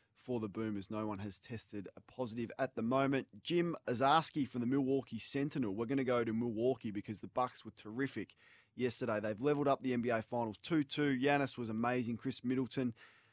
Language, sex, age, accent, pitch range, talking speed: English, male, 20-39, Australian, 110-135 Hz, 190 wpm